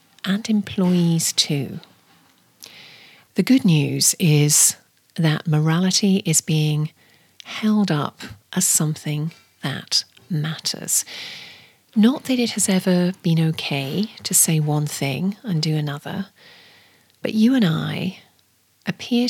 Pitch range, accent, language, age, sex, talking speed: 155-190 Hz, British, English, 40-59, female, 110 wpm